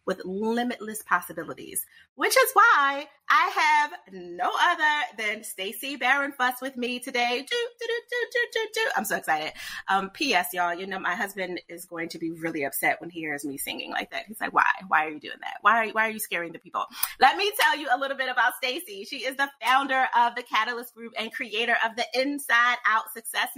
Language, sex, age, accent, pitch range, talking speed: English, female, 30-49, American, 185-250 Hz, 225 wpm